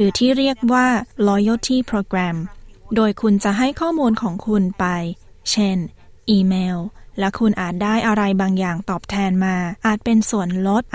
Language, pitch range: Thai, 190-230 Hz